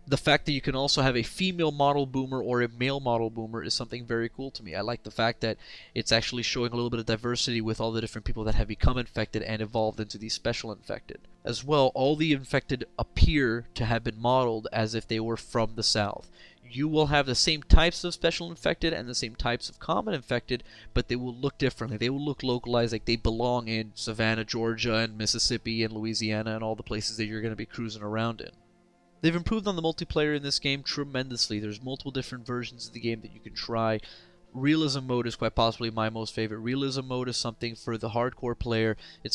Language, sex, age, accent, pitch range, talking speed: English, male, 20-39, American, 110-125 Hz, 230 wpm